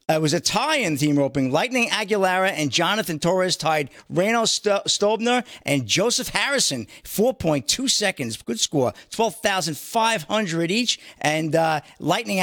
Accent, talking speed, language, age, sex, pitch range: American, 140 wpm, English, 50-69, male, 155-210 Hz